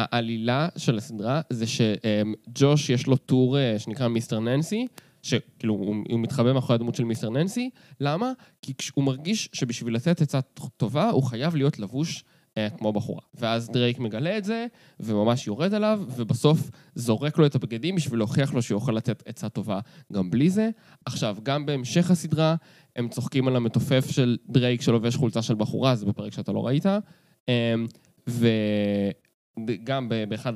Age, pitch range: 20-39, 115-150 Hz